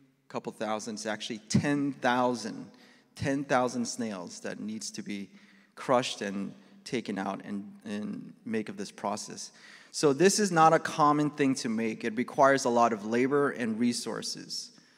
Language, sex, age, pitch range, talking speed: English, male, 30-49, 125-175 Hz, 150 wpm